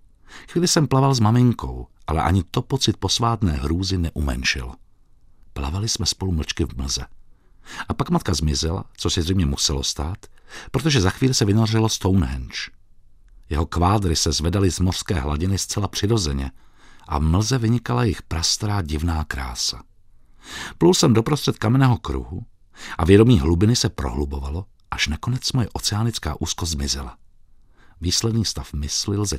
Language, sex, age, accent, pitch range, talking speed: Czech, male, 50-69, native, 80-110 Hz, 145 wpm